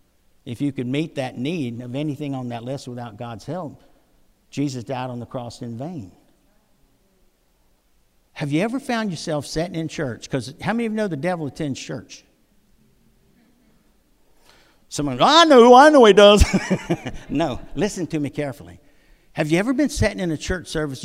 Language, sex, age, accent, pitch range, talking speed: English, male, 60-79, American, 120-150 Hz, 175 wpm